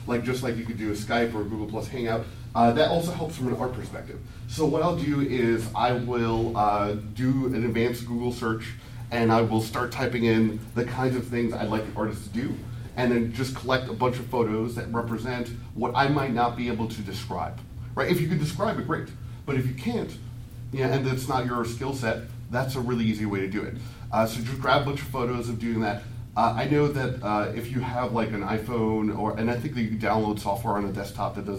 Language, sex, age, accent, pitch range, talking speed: English, male, 40-59, American, 110-130 Hz, 245 wpm